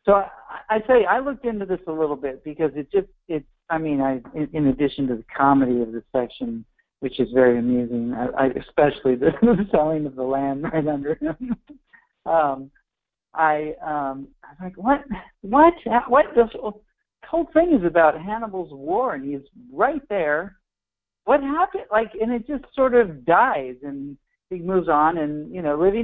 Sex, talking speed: male, 185 wpm